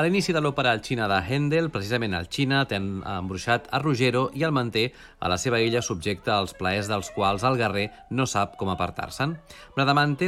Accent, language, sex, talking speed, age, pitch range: Spanish, Spanish, male, 205 wpm, 40-59, 100-140 Hz